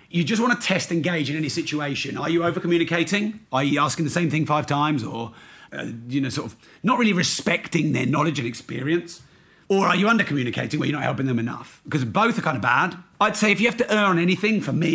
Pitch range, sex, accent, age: 140-175 Hz, male, British, 40-59